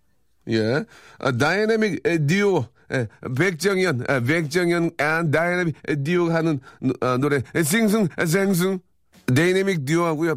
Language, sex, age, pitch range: Korean, male, 40-59, 110-155 Hz